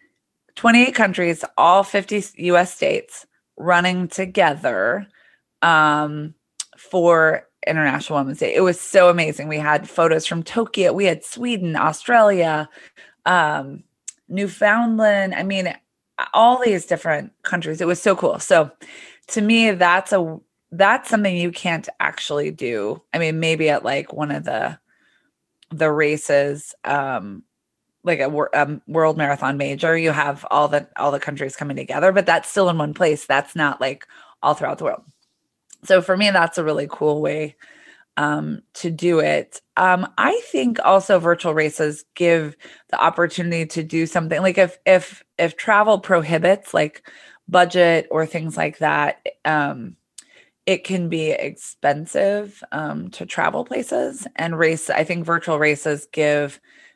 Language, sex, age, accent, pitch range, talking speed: English, female, 30-49, American, 155-190 Hz, 145 wpm